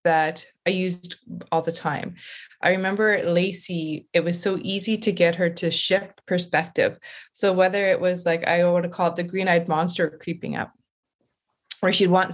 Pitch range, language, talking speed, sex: 175-240 Hz, English, 185 wpm, female